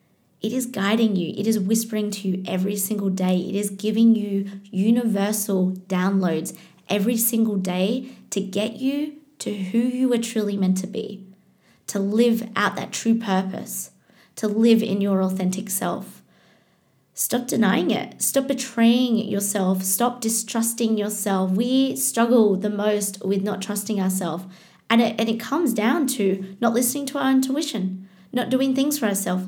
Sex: female